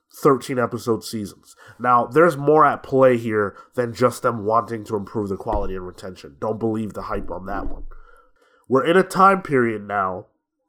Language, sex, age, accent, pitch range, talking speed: English, male, 20-39, American, 120-170 Hz, 180 wpm